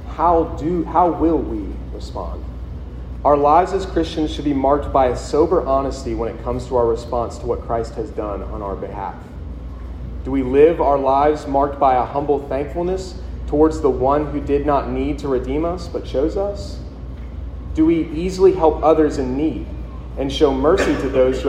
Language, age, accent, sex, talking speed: English, 30-49, American, male, 185 wpm